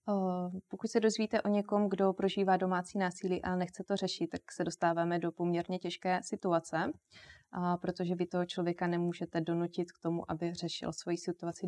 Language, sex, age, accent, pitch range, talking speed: Czech, female, 20-39, native, 175-195 Hz, 175 wpm